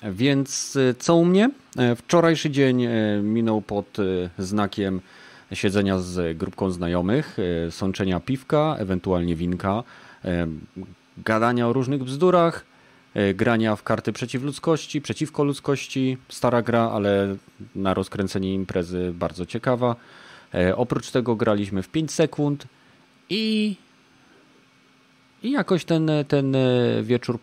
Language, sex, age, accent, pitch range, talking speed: Polish, male, 30-49, native, 95-140 Hz, 105 wpm